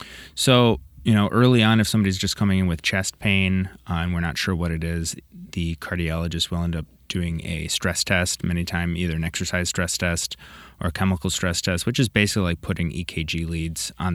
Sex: male